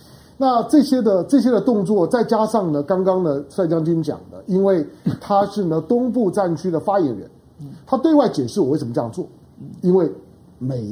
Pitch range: 155-235 Hz